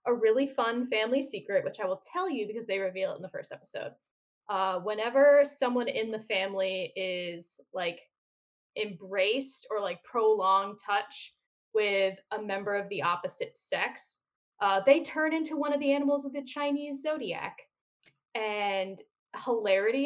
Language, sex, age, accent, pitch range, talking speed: English, female, 10-29, American, 195-275 Hz, 155 wpm